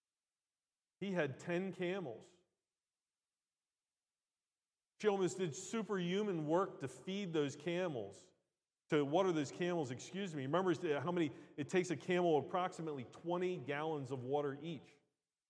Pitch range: 150-190 Hz